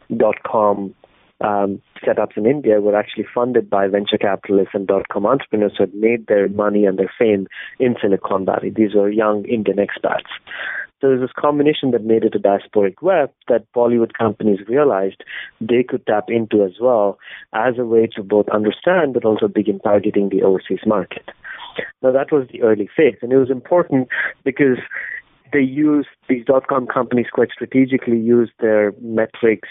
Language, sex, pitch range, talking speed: English, male, 105-120 Hz, 170 wpm